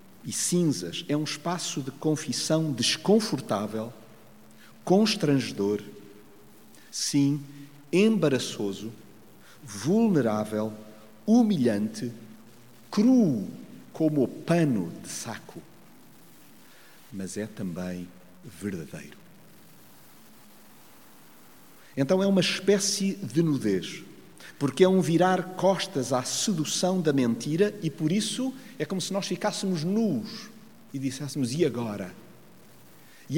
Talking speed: 95 wpm